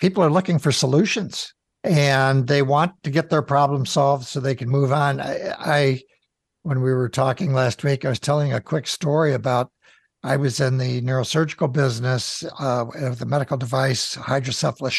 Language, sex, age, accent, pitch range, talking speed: English, male, 60-79, American, 135-165 Hz, 180 wpm